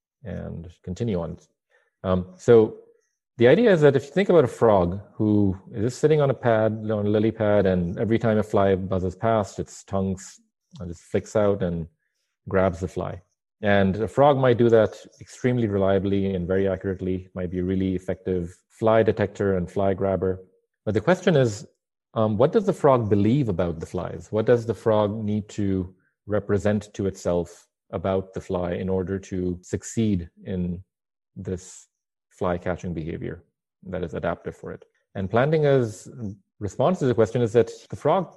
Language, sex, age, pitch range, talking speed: English, male, 30-49, 90-110 Hz, 175 wpm